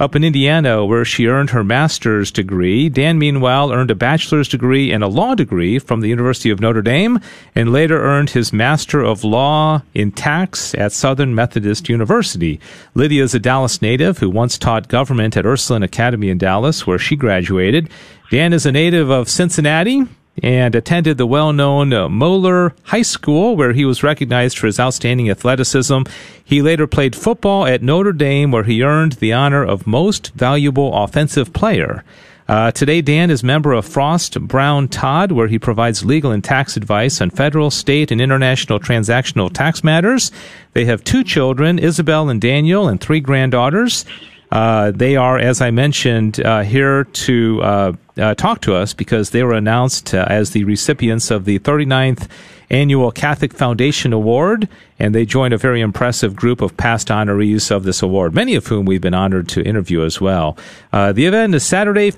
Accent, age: American, 40-59